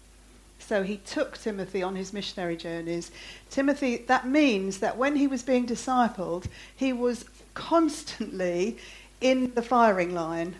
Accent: British